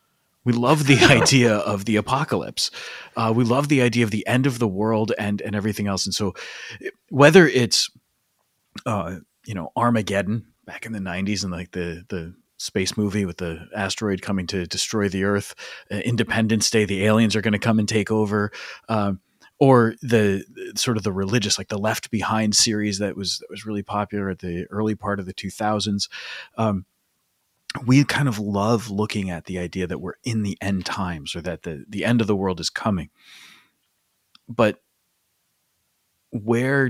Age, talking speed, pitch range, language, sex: 30-49, 180 wpm, 95-115 Hz, English, male